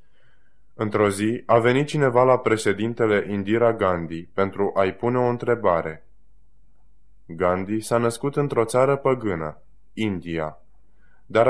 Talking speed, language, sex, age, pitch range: 115 wpm, Romanian, male, 20-39, 90-115 Hz